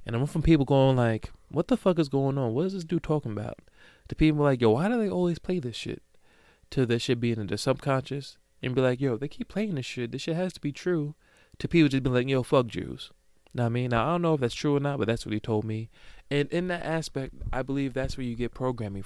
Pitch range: 115-150 Hz